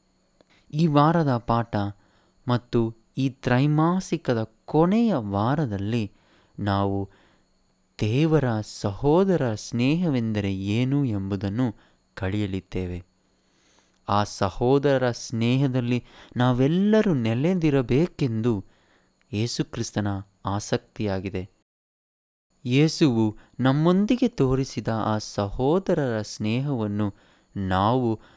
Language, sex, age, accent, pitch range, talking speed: Kannada, male, 20-39, native, 100-130 Hz, 60 wpm